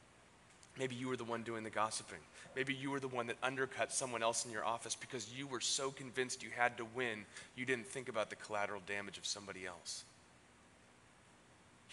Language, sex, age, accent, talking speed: English, male, 30-49, American, 200 wpm